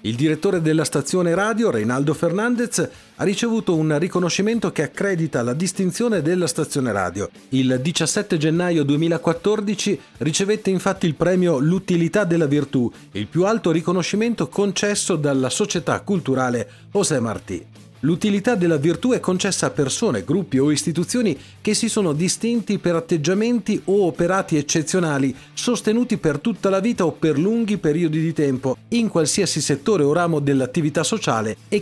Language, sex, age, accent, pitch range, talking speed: Italian, male, 40-59, native, 145-195 Hz, 145 wpm